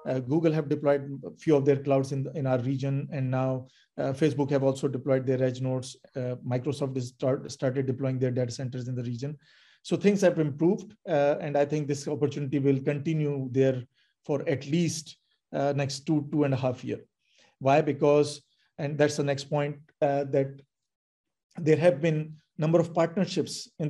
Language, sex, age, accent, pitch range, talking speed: English, male, 40-59, Indian, 135-160 Hz, 190 wpm